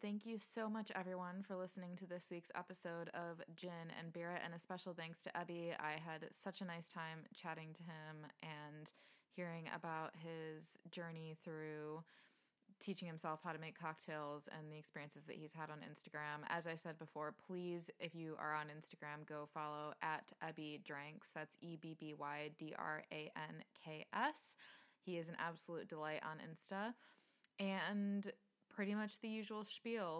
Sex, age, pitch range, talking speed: female, 20-39, 160-185 Hz, 160 wpm